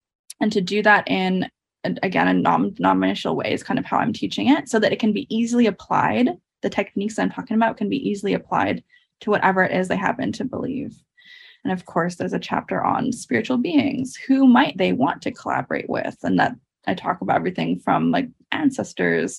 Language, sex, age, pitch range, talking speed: English, female, 20-39, 185-255 Hz, 200 wpm